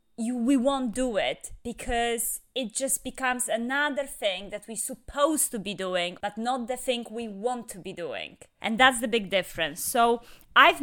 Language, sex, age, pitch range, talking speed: English, female, 20-39, 215-275 Hz, 185 wpm